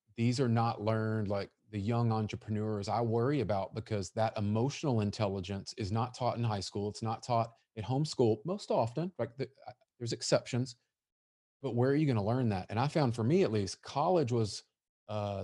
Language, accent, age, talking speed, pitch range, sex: English, American, 30-49, 195 wpm, 105-130 Hz, male